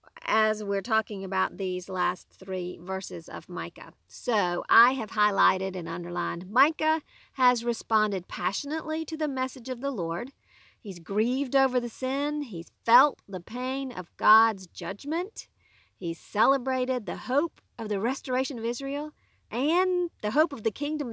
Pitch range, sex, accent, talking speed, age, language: 175-265 Hz, female, American, 150 wpm, 50-69, English